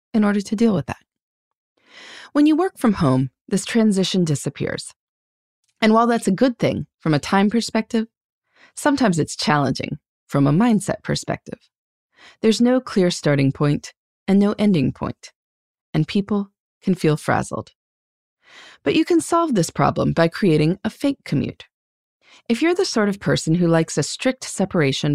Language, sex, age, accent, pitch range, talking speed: English, female, 30-49, American, 155-230 Hz, 160 wpm